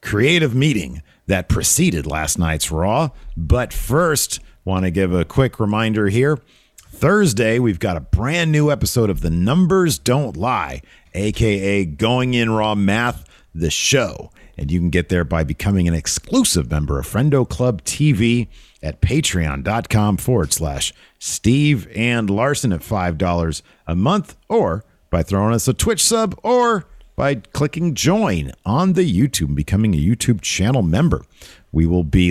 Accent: American